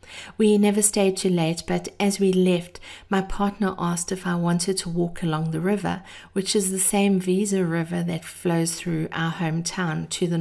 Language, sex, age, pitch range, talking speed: English, female, 50-69, 165-190 Hz, 190 wpm